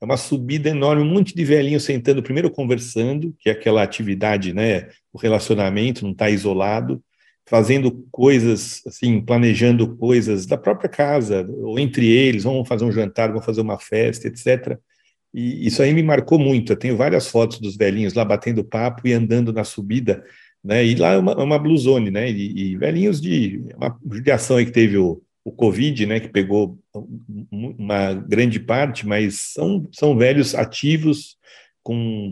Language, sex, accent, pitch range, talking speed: Portuguese, male, Brazilian, 110-140 Hz, 175 wpm